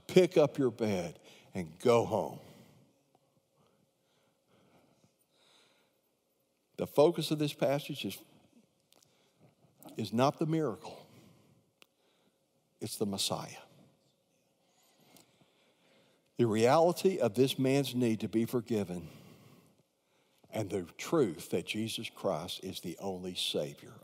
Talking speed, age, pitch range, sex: 95 wpm, 60-79, 105-130 Hz, male